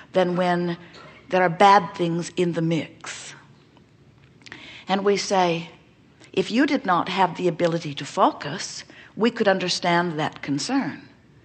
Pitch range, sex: 175-215 Hz, female